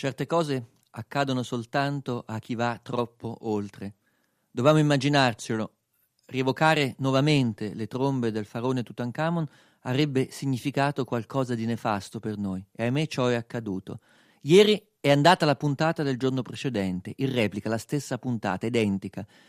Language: Italian